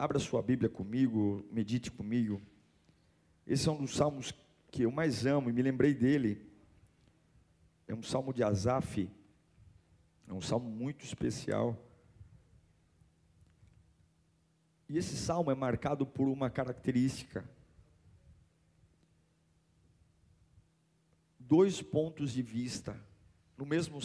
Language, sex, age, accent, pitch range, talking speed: Portuguese, male, 50-69, Brazilian, 100-145 Hz, 105 wpm